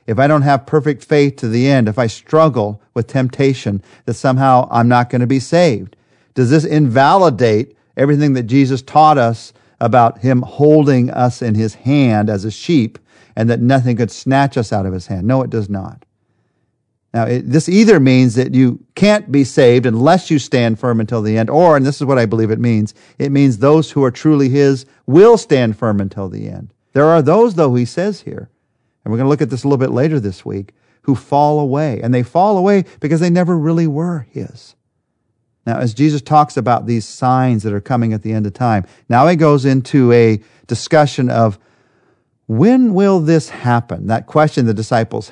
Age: 40-59